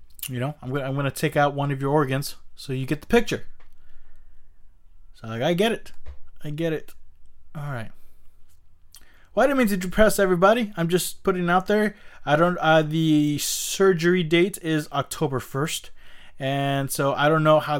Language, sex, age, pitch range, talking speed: English, male, 20-39, 120-170 Hz, 180 wpm